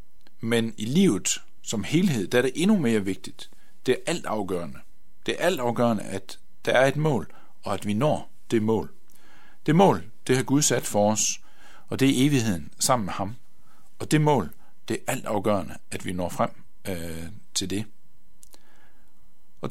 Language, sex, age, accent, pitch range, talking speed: Danish, male, 60-79, native, 100-145 Hz, 175 wpm